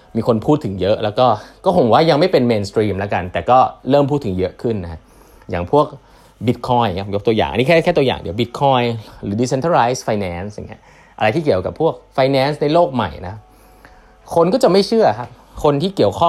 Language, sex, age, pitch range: Thai, male, 20-39, 105-160 Hz